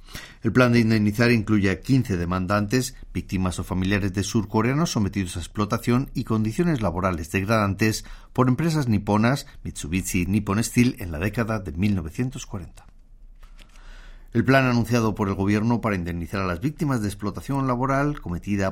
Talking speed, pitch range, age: 150 wpm, 95-120 Hz, 40-59